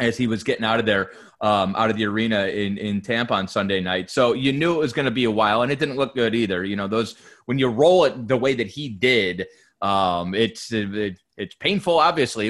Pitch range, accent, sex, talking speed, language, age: 110-135 Hz, American, male, 245 wpm, English, 30-49